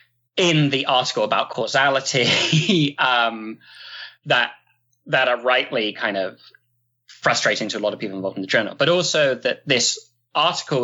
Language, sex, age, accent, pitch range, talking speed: English, male, 20-39, British, 120-160 Hz, 150 wpm